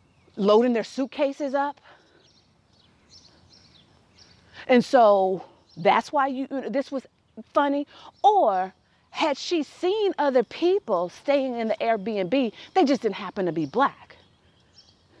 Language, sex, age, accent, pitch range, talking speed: English, female, 40-59, American, 210-325 Hz, 115 wpm